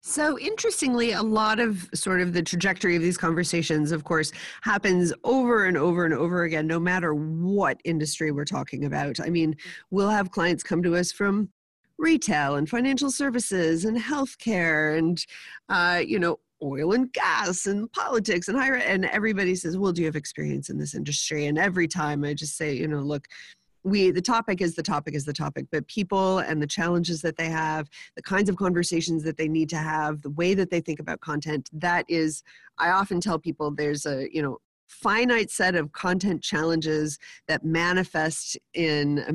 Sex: female